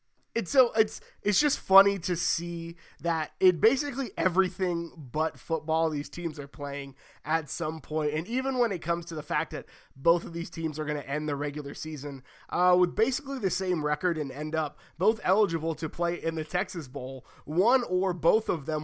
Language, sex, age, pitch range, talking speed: English, male, 20-39, 150-185 Hz, 200 wpm